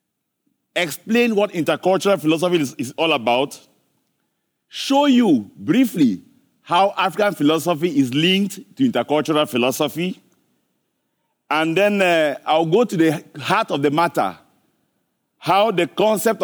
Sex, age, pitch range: male, 50-69, 150-225 Hz